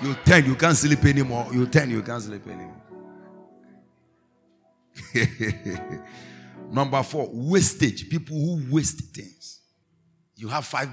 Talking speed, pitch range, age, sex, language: 120 wpm, 110-165 Hz, 50-69, male, English